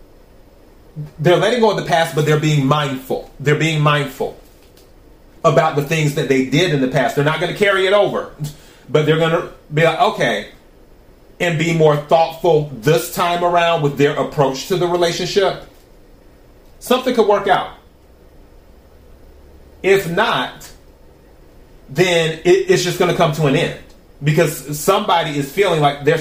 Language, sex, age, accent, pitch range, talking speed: English, male, 30-49, American, 135-175 Hz, 160 wpm